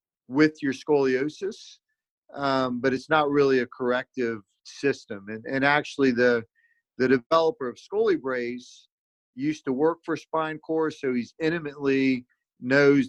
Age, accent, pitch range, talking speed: 40-59, American, 125-155 Hz, 140 wpm